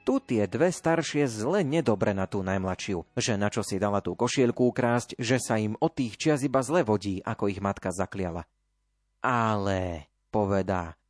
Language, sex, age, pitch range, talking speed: Slovak, male, 30-49, 100-135 Hz, 175 wpm